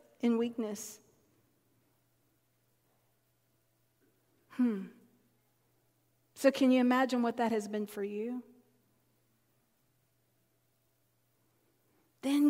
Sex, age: female, 40-59